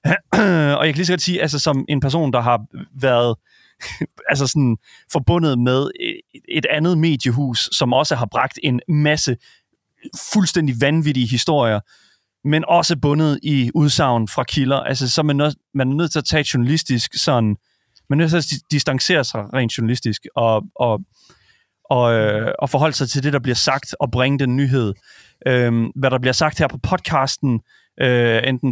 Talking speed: 180 wpm